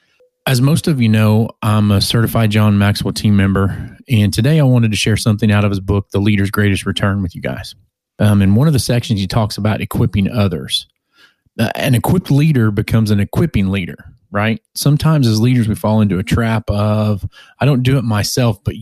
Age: 30-49